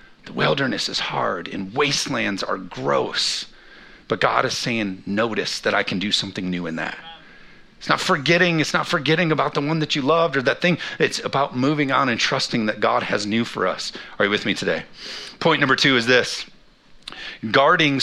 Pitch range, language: 115-160 Hz, English